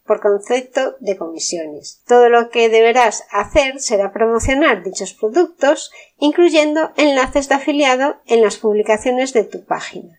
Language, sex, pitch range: Spanish, female, 210-290 Hz